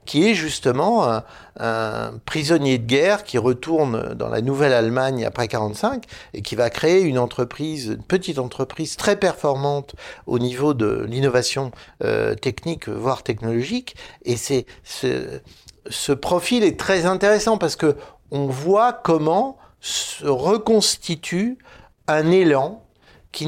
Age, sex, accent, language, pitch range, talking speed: 60-79, male, French, French, 125-190 Hz, 130 wpm